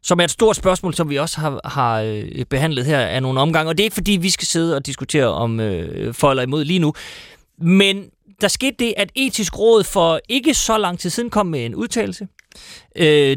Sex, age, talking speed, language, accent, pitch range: male, 30-49, 225 wpm, Danish, native, 135-210 Hz